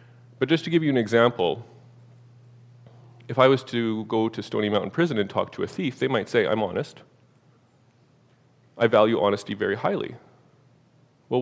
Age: 30-49